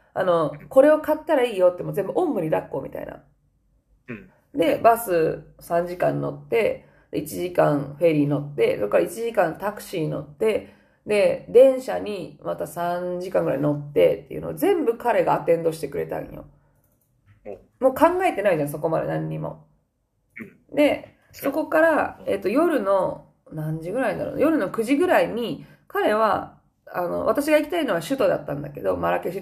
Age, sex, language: 20-39, female, Japanese